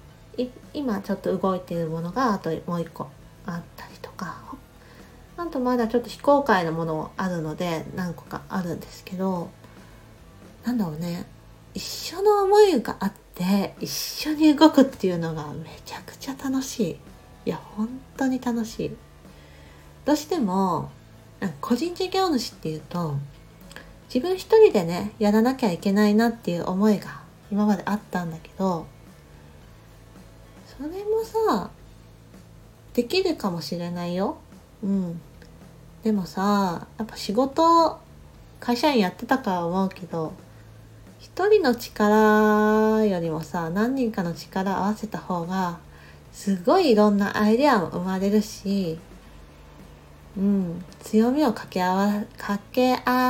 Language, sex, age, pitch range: Japanese, female, 40-59, 165-240 Hz